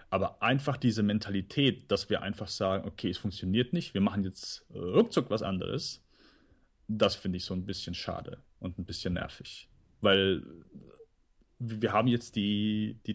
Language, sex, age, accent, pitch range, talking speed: German, male, 30-49, German, 95-120 Hz, 160 wpm